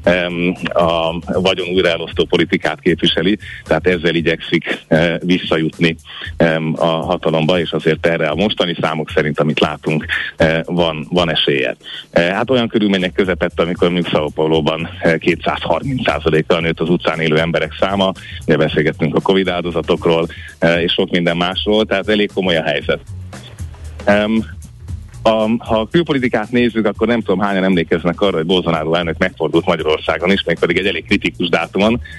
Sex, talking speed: male, 140 wpm